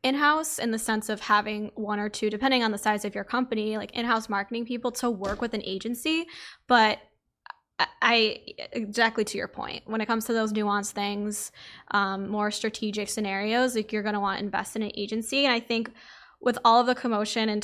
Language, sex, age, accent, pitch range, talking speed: English, female, 10-29, American, 210-240 Hz, 210 wpm